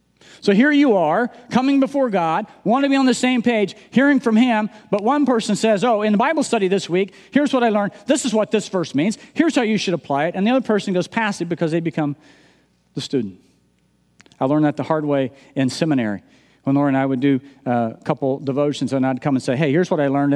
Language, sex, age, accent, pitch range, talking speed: English, male, 40-59, American, 160-230 Hz, 245 wpm